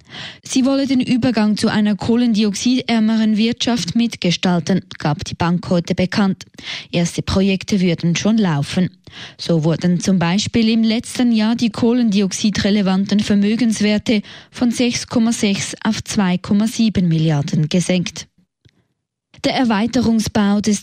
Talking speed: 110 wpm